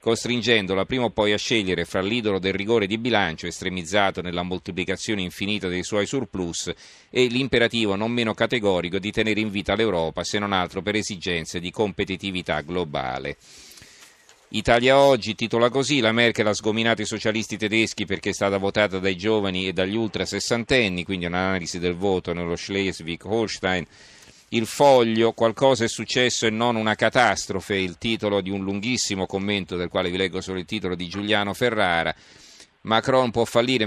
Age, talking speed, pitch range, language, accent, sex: 40-59, 165 wpm, 95-115 Hz, Italian, native, male